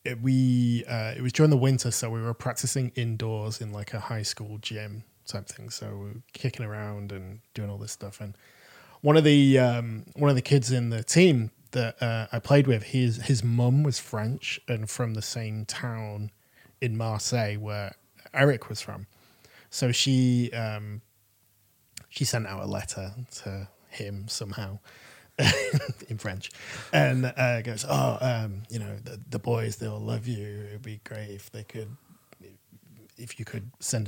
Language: English